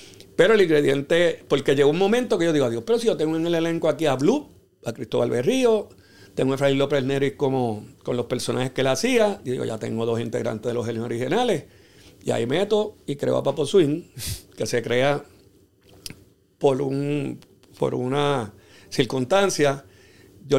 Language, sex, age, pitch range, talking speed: English, male, 50-69, 115-155 Hz, 185 wpm